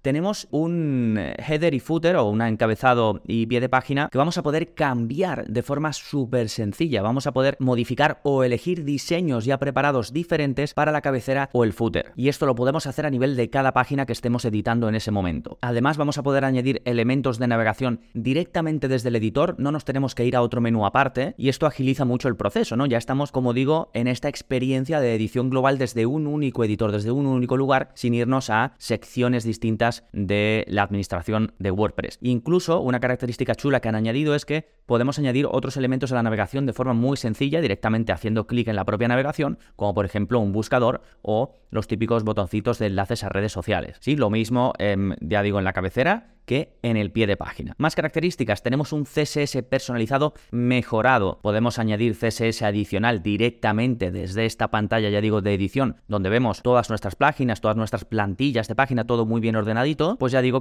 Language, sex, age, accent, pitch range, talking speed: Spanish, male, 20-39, Spanish, 110-135 Hz, 200 wpm